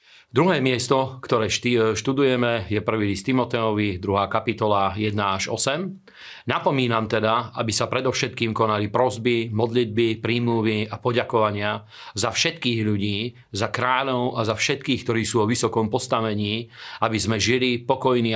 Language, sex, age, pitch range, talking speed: Slovak, male, 40-59, 110-125 Hz, 135 wpm